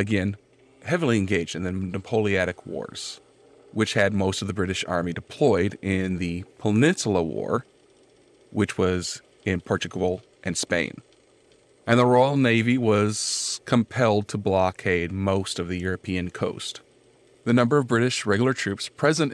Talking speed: 140 wpm